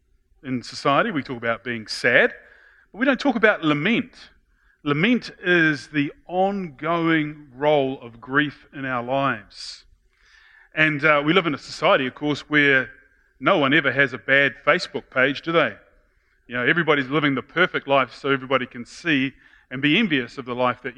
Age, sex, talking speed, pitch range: 30-49, male, 175 wpm, 130-160 Hz